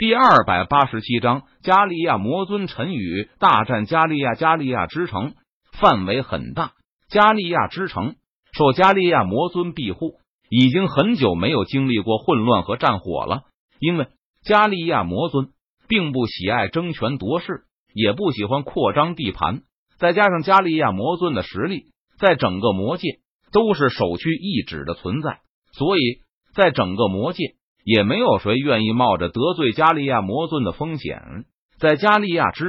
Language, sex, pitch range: Chinese, male, 120-175 Hz